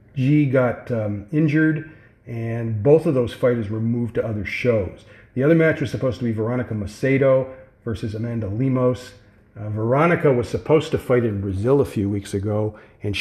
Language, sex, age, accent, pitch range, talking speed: English, male, 50-69, American, 105-135 Hz, 175 wpm